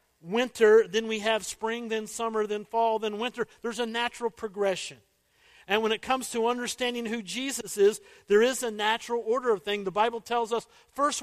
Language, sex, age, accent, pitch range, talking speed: English, male, 50-69, American, 185-235 Hz, 190 wpm